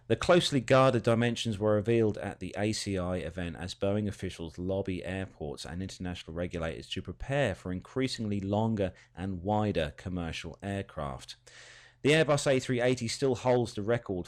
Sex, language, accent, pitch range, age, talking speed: male, English, British, 90-120 Hz, 30-49, 145 wpm